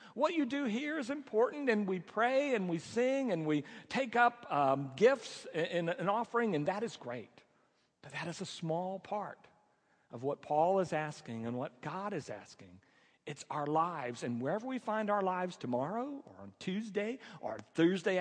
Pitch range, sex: 135-205 Hz, male